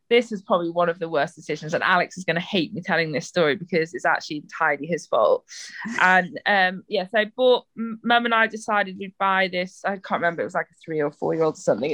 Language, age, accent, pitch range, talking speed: English, 20-39, British, 175-220 Hz, 245 wpm